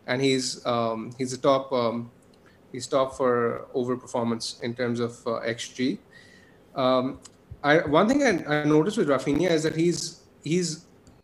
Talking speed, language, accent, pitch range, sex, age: 155 wpm, English, Indian, 125-155 Hz, male, 30-49